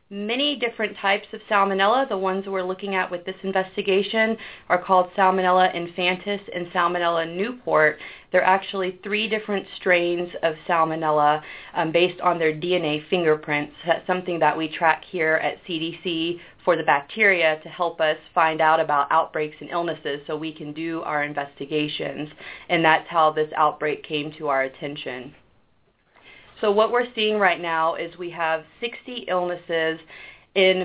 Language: English